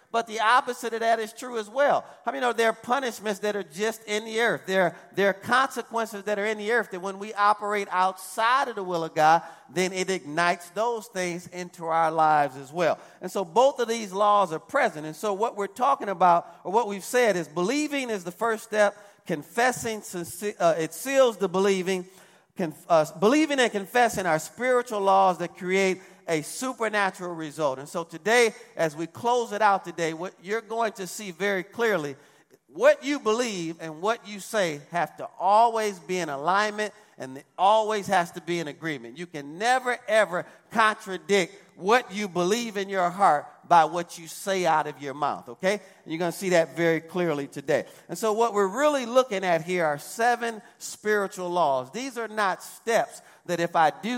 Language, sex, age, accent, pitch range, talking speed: English, male, 40-59, American, 175-225 Hz, 195 wpm